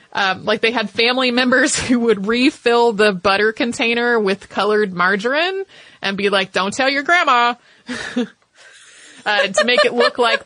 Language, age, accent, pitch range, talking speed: English, 30-49, American, 190-240 Hz, 160 wpm